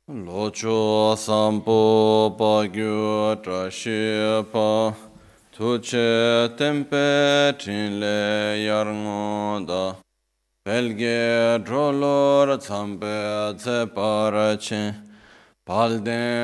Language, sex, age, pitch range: Italian, male, 30-49, 105-130 Hz